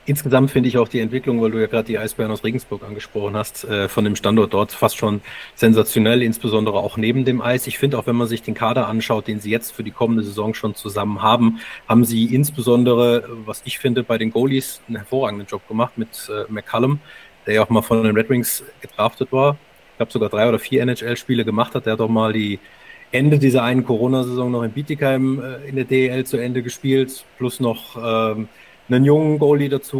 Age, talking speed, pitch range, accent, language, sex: 30-49, 210 wpm, 110-130 Hz, German, German, male